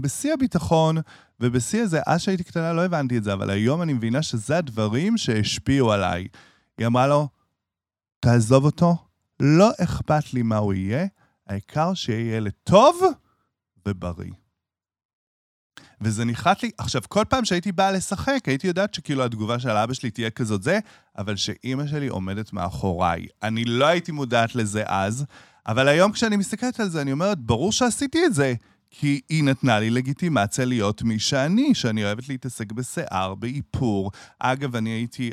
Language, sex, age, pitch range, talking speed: Hebrew, male, 30-49, 105-155 Hz, 140 wpm